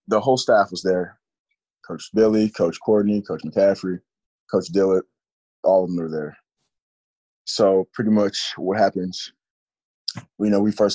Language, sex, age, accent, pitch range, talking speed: English, male, 20-39, American, 90-100 Hz, 150 wpm